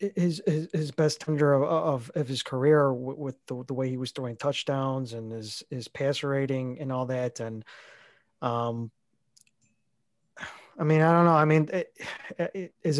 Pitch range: 130-155 Hz